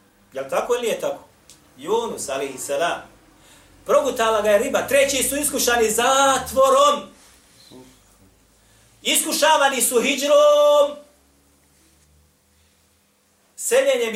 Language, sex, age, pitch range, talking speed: English, male, 40-59, 185-290 Hz, 90 wpm